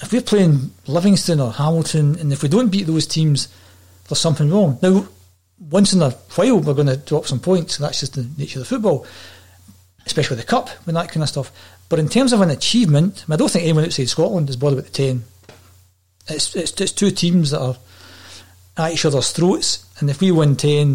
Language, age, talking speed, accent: English, 40-59, 220 wpm, British